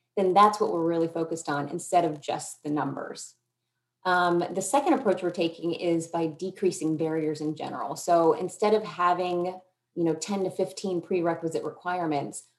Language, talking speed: English, 165 wpm